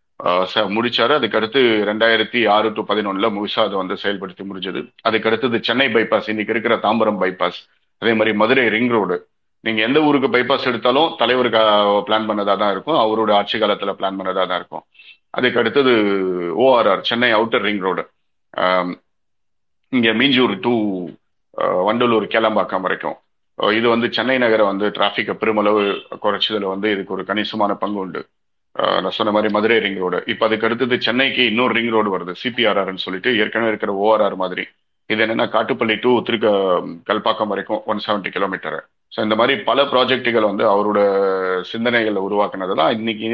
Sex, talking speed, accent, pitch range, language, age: male, 95 wpm, native, 100-115 Hz, Tamil, 50-69